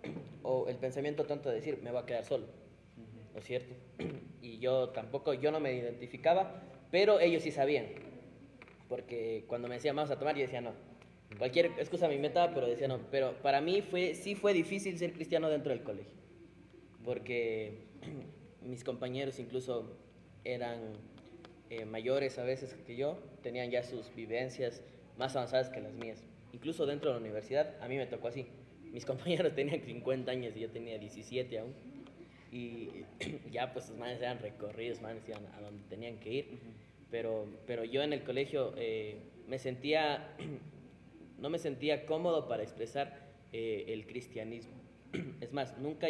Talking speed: 170 wpm